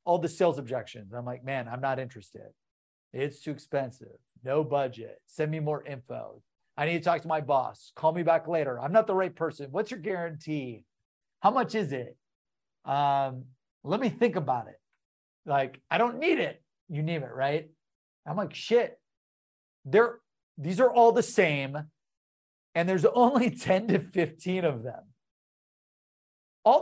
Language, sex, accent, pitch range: English, male, American, 140-200 Hz